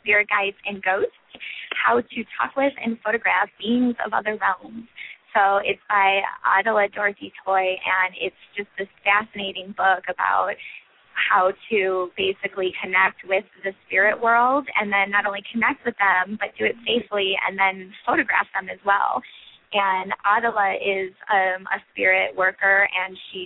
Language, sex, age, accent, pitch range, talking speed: English, female, 10-29, American, 190-210 Hz, 155 wpm